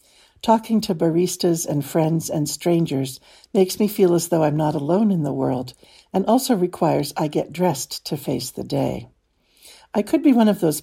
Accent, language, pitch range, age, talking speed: American, English, 145-200 Hz, 60-79, 190 wpm